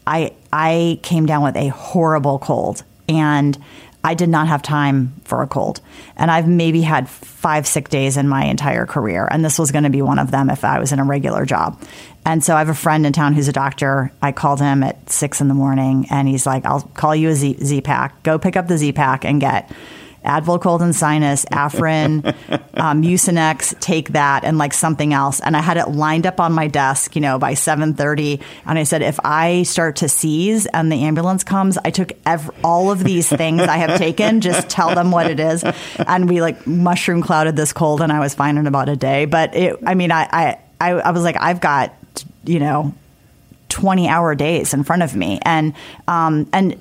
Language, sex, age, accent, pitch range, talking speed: English, female, 30-49, American, 145-170 Hz, 220 wpm